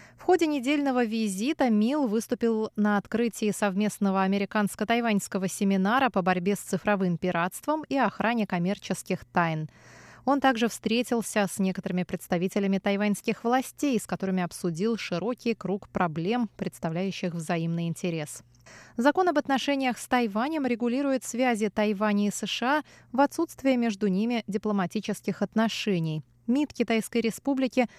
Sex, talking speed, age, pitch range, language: female, 120 wpm, 20-39, 190-245 Hz, Russian